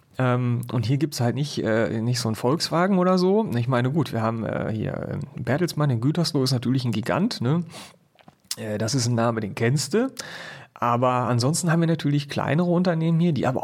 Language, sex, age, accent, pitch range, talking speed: German, male, 40-59, German, 115-155 Hz, 190 wpm